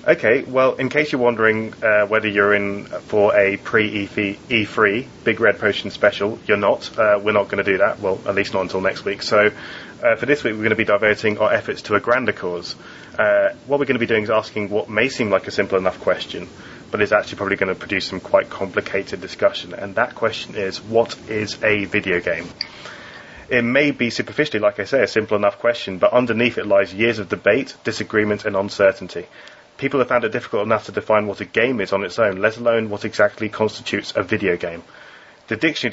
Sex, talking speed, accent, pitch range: male, 220 wpm, British, 105-120 Hz